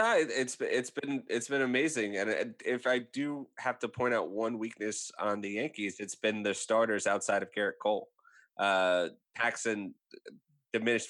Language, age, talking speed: English, 20-39, 170 wpm